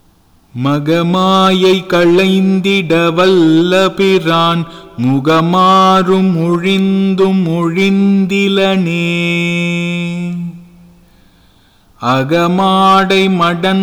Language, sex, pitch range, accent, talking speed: English, male, 170-190 Hz, Indian, 55 wpm